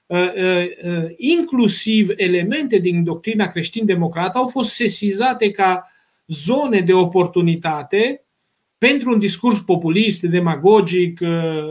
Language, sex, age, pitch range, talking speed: Romanian, male, 30-49, 170-210 Hz, 85 wpm